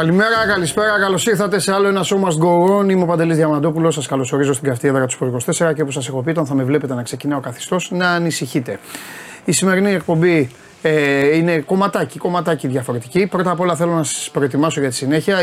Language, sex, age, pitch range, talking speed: Greek, male, 30-49, 140-180 Hz, 220 wpm